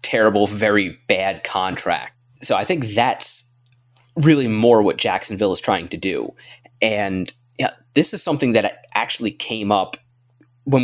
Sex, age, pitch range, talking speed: male, 20-39, 105-130 Hz, 145 wpm